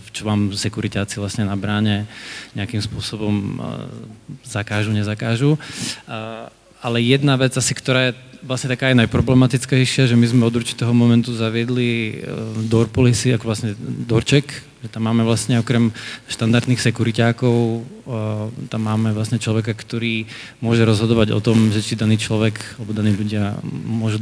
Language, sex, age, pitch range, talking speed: English, male, 20-39, 110-120 Hz, 140 wpm